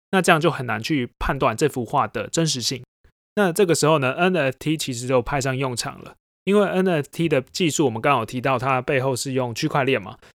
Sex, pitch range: male, 125-165 Hz